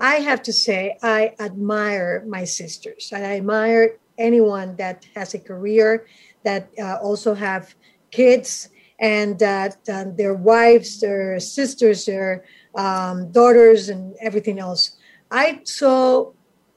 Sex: female